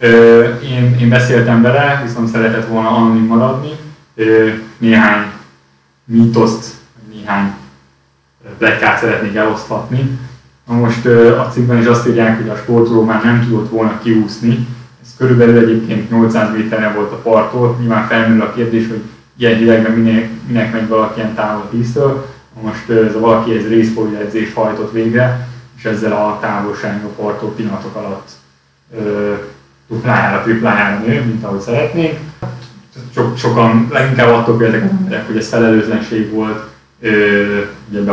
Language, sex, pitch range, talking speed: Hungarian, male, 110-120 Hz, 145 wpm